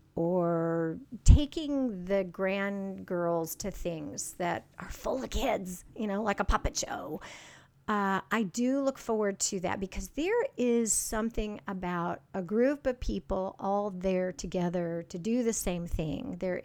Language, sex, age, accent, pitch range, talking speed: English, female, 50-69, American, 185-230 Hz, 155 wpm